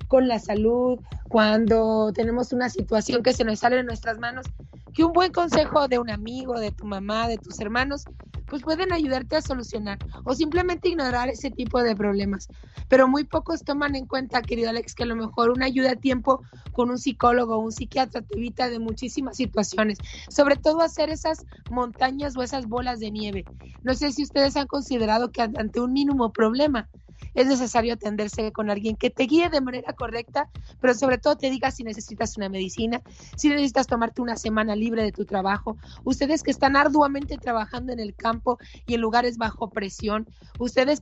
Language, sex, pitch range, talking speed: Spanish, female, 225-275 Hz, 190 wpm